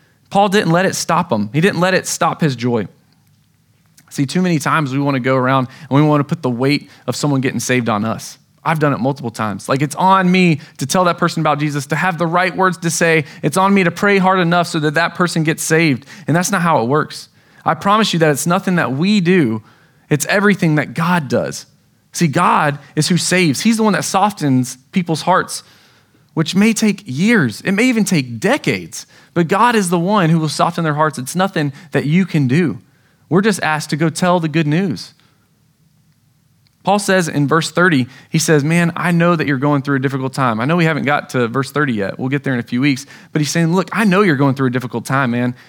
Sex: male